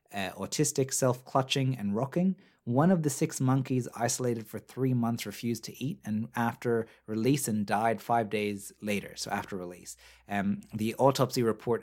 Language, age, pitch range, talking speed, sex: English, 30-49, 100-120 Hz, 160 wpm, male